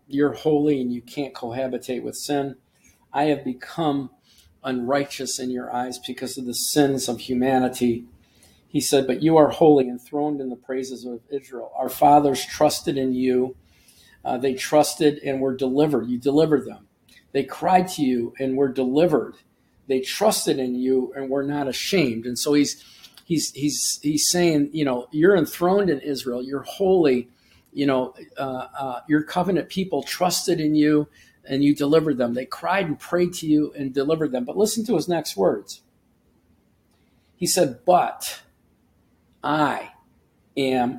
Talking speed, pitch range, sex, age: 165 wpm, 125-150 Hz, male, 50-69